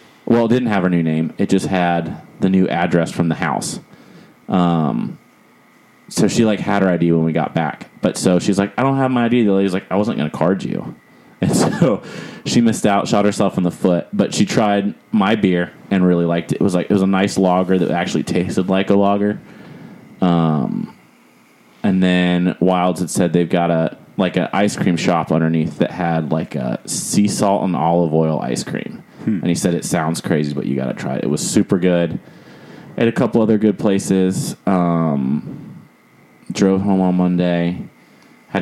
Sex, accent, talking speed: male, American, 205 wpm